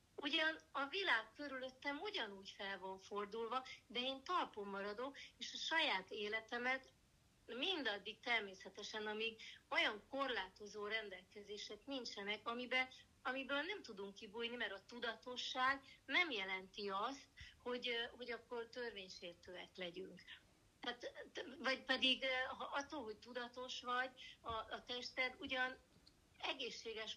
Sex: female